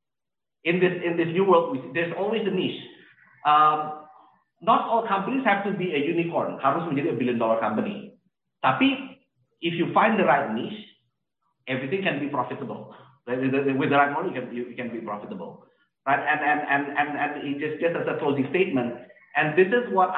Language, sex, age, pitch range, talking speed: Indonesian, male, 50-69, 135-195 Hz, 190 wpm